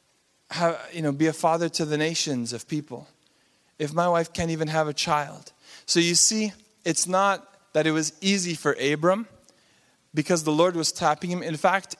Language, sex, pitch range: English, male, 135-165 Hz